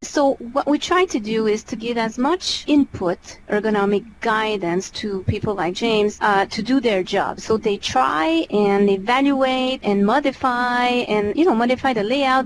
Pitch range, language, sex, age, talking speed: 205-265 Hz, English, female, 30-49, 175 wpm